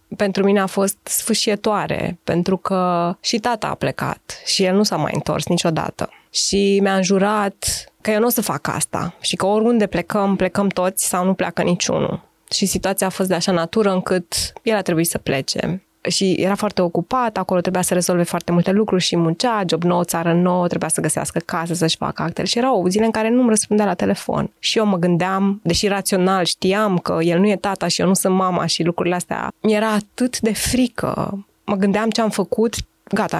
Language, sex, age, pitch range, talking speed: Romanian, female, 20-39, 175-215 Hz, 210 wpm